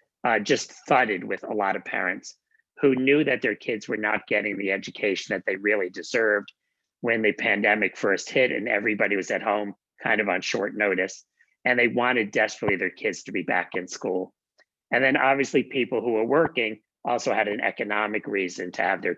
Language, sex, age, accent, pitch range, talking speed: English, male, 40-59, American, 105-135 Hz, 195 wpm